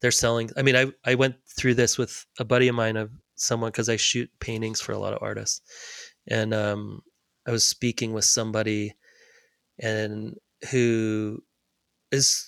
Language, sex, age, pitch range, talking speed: English, male, 30-49, 110-125 Hz, 170 wpm